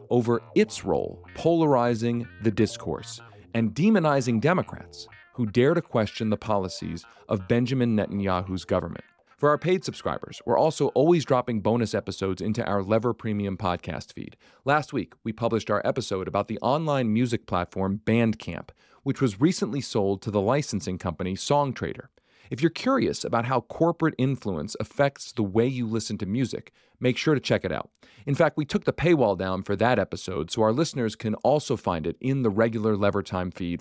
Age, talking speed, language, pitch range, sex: 40-59, 175 wpm, English, 100-130 Hz, male